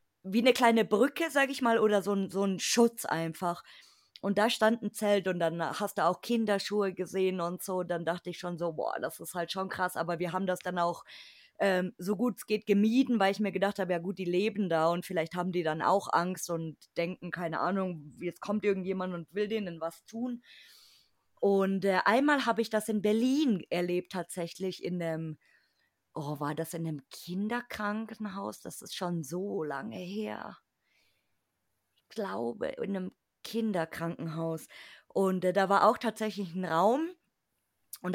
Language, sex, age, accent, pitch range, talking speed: German, female, 20-39, German, 175-215 Hz, 185 wpm